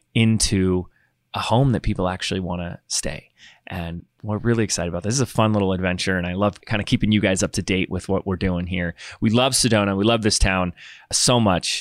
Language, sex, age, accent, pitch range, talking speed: English, male, 30-49, American, 90-115 Hz, 235 wpm